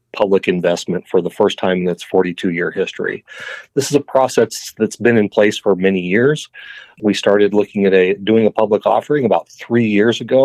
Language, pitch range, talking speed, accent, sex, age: English, 100-125 Hz, 190 wpm, American, male, 40-59